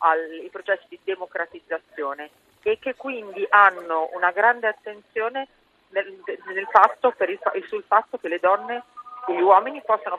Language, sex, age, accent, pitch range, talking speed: Italian, female, 40-59, native, 165-225 Hz, 145 wpm